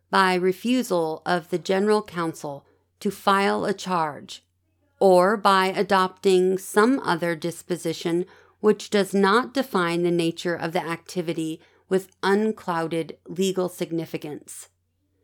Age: 40-59